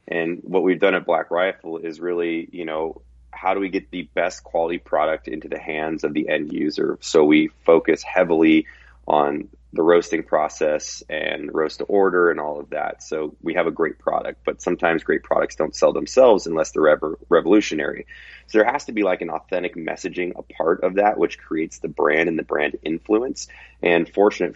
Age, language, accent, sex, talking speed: 30-49, English, American, male, 200 wpm